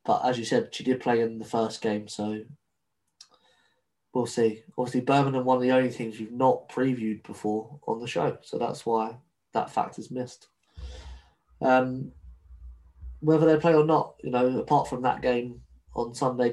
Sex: male